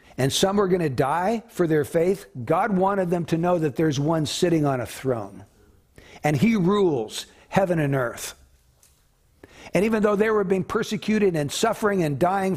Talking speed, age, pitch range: 180 wpm, 60-79, 140-190 Hz